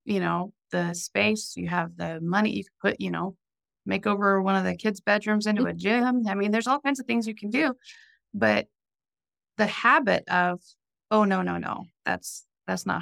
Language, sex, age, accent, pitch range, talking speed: English, female, 30-49, American, 170-215 Hz, 200 wpm